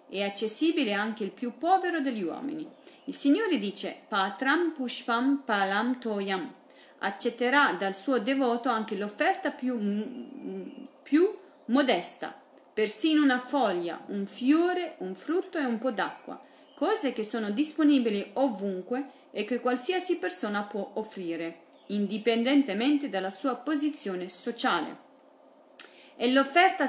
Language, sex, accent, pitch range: Italian, female, native, 200-280 Hz